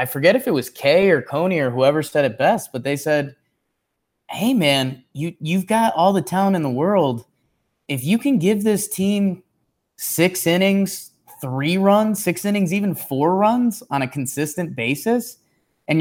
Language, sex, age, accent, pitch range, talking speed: English, male, 20-39, American, 125-190 Hz, 175 wpm